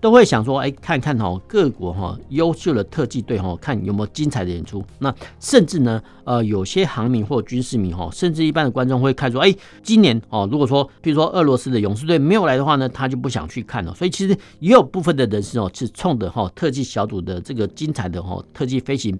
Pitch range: 105-145 Hz